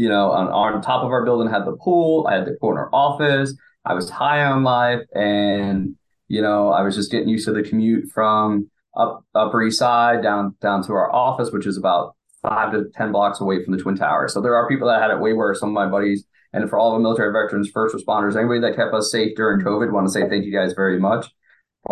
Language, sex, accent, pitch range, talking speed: English, male, American, 95-115 Hz, 250 wpm